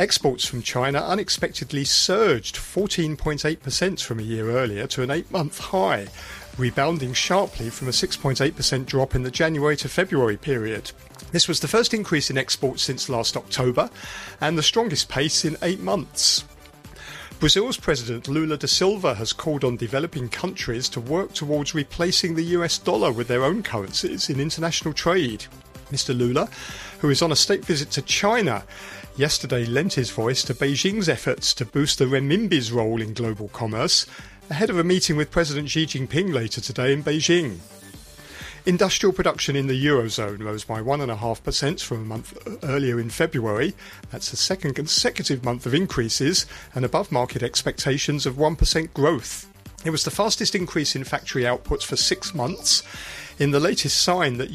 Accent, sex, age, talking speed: British, male, 40-59, 160 wpm